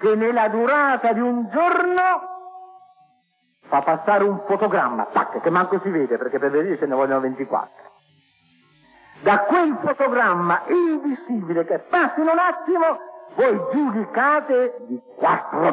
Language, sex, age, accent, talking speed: Italian, male, 50-69, native, 130 wpm